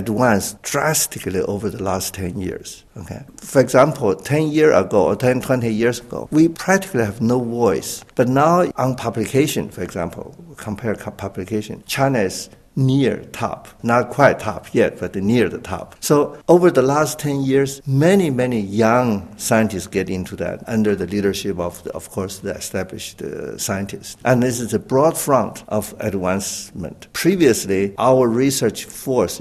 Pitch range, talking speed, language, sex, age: 105-135 Hz, 155 wpm, English, male, 60-79